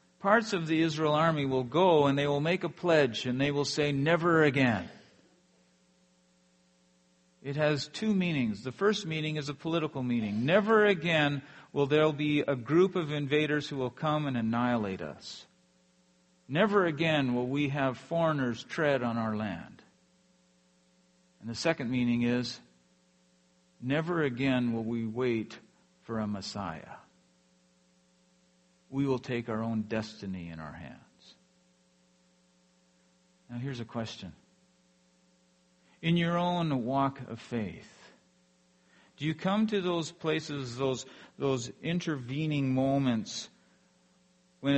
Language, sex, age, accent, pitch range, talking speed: English, male, 50-69, American, 105-155 Hz, 130 wpm